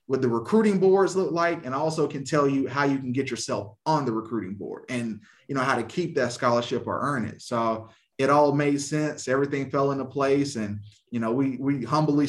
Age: 20-39